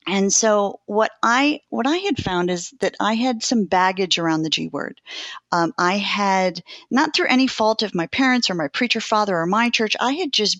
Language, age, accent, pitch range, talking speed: English, 50-69, American, 175-225 Hz, 215 wpm